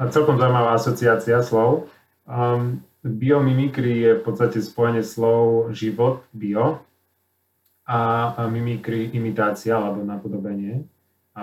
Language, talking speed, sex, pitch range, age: Slovak, 105 wpm, male, 105-120 Hz, 30-49